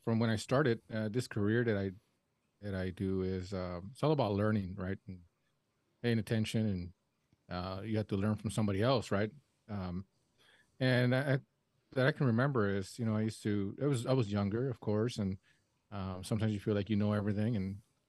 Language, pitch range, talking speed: English, 100-125 Hz, 205 wpm